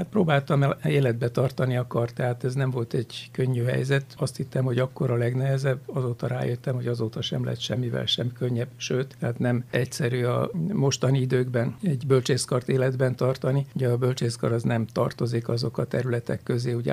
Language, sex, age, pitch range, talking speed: Hungarian, male, 60-79, 120-135 Hz, 175 wpm